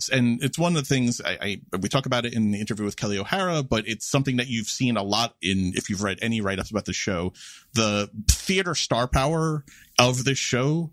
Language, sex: English, male